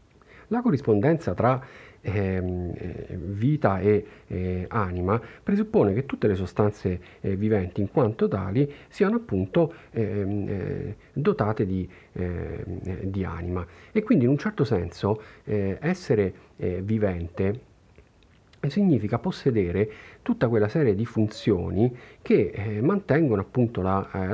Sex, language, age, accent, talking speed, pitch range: male, Italian, 40-59, native, 120 wpm, 95-120 Hz